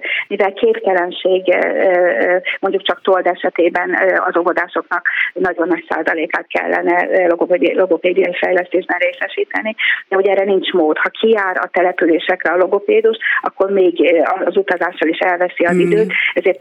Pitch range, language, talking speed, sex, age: 175-205 Hz, Hungarian, 125 wpm, female, 30-49